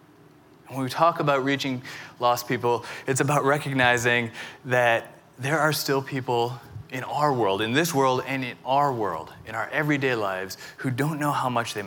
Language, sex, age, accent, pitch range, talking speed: English, male, 20-39, American, 115-135 Hz, 175 wpm